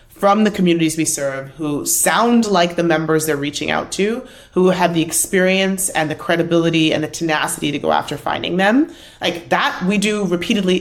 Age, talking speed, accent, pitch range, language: 30-49, 190 wpm, American, 160-195 Hz, English